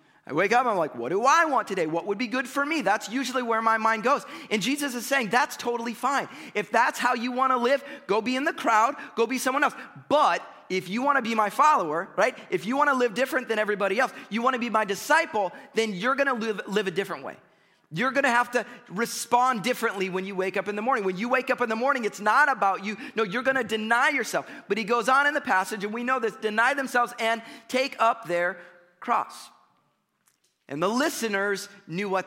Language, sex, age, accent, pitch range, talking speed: English, male, 30-49, American, 210-270 Hz, 245 wpm